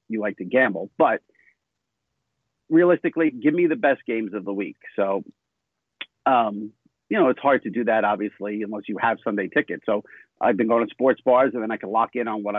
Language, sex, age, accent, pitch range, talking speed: English, male, 50-69, American, 105-160 Hz, 210 wpm